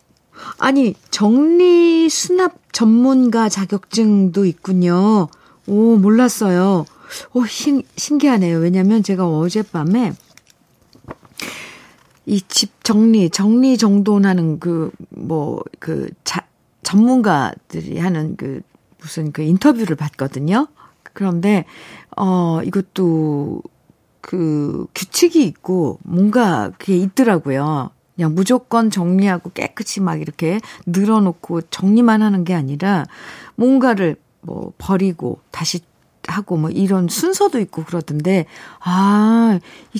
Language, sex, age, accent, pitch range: Korean, female, 40-59, native, 170-230 Hz